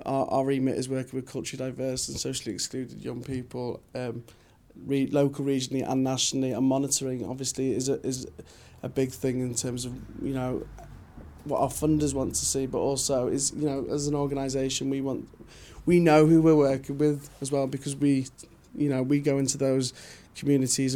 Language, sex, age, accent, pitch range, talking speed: English, male, 20-39, British, 130-145 Hz, 190 wpm